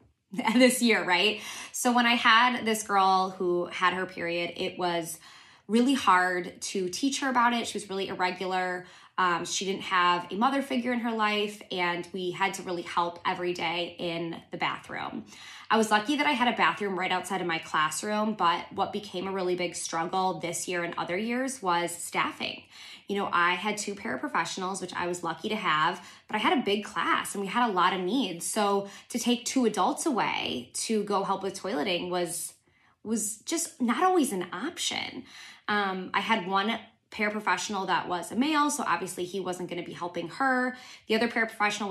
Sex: female